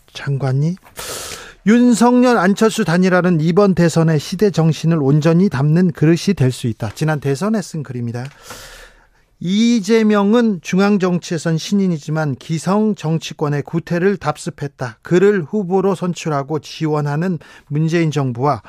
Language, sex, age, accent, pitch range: Korean, male, 40-59, native, 145-200 Hz